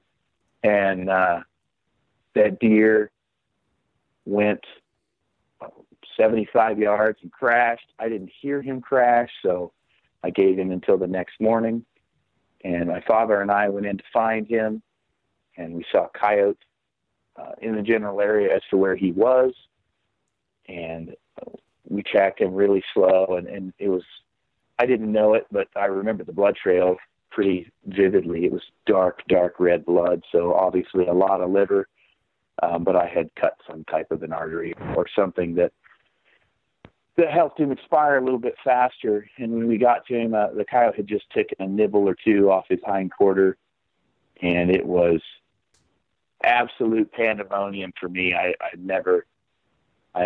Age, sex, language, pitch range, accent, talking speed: 50-69, male, English, 90-115 Hz, American, 160 wpm